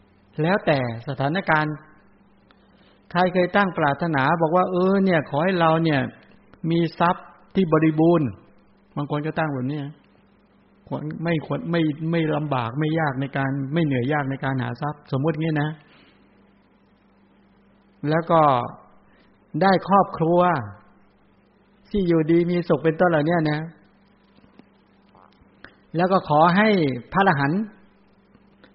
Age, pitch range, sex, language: 60-79, 150-180 Hz, male, English